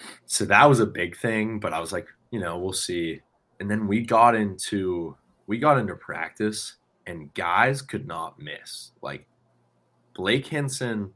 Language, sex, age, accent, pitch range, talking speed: English, male, 20-39, American, 75-110 Hz, 165 wpm